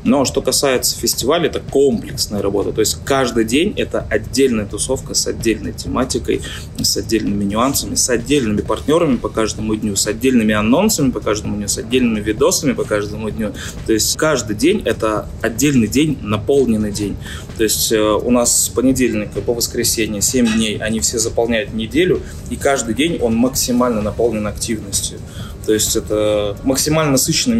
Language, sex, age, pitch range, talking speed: Russian, male, 20-39, 105-125 Hz, 160 wpm